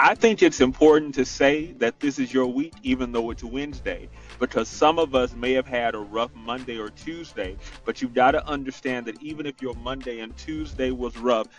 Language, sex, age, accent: English, male, 30-49, American